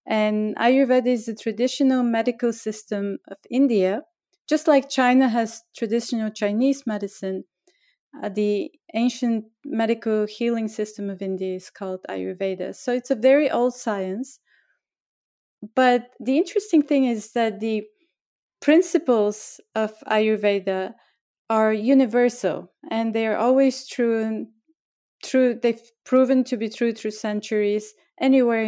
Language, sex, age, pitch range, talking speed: English, female, 30-49, 210-255 Hz, 125 wpm